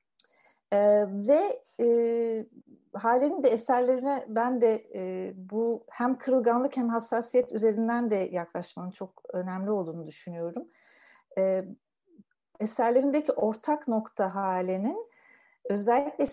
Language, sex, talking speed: Turkish, female, 85 wpm